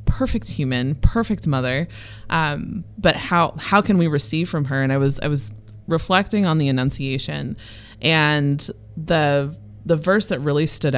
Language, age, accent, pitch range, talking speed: English, 20-39, American, 130-155 Hz, 160 wpm